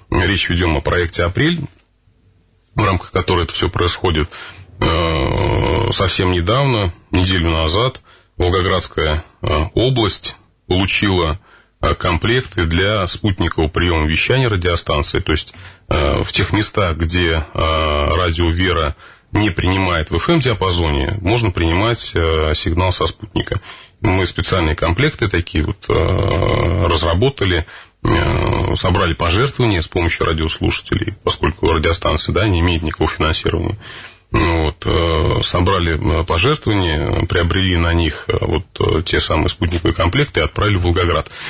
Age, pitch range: 30-49, 85-105 Hz